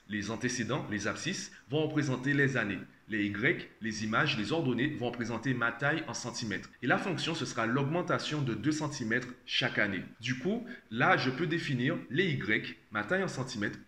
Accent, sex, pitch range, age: French, male, 115-145 Hz, 30-49